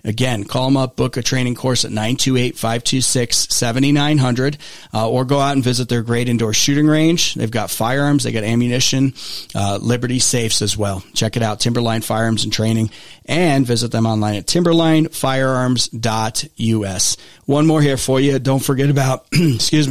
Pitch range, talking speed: 115-140 Hz, 165 wpm